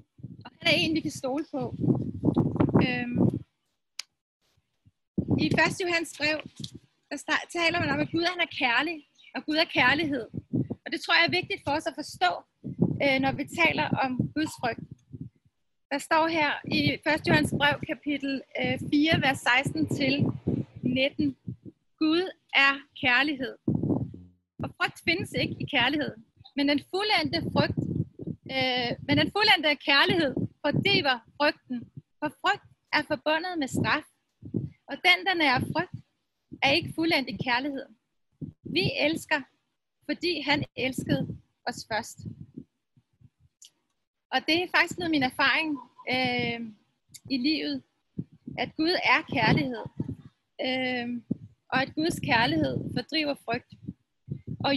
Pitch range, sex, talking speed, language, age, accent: 265-325 Hz, female, 130 wpm, Danish, 30-49, native